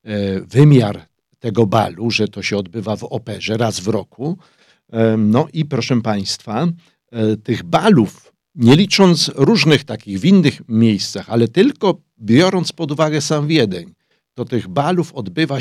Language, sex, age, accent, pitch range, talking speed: German, male, 50-69, Polish, 105-135 Hz, 140 wpm